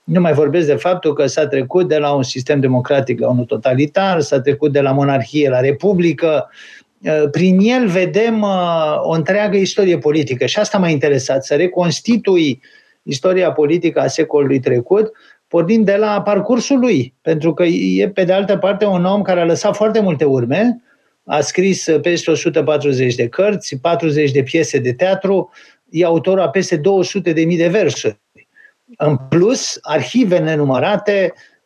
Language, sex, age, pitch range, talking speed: Romanian, male, 50-69, 145-195 Hz, 160 wpm